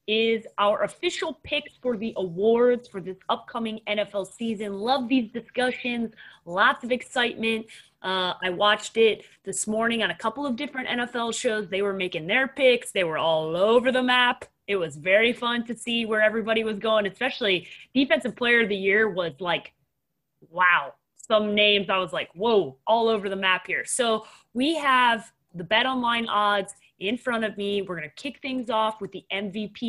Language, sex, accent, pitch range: English, female, American, 195-250 Hz